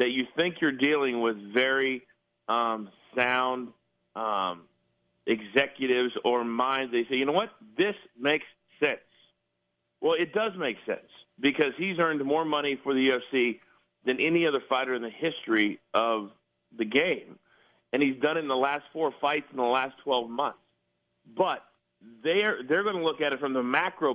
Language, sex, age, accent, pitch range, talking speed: English, male, 50-69, American, 125-155 Hz, 170 wpm